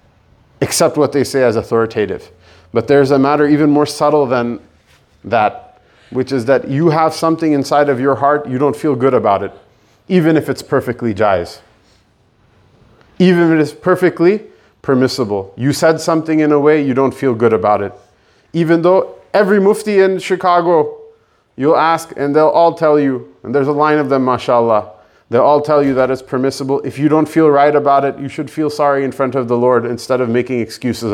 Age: 30-49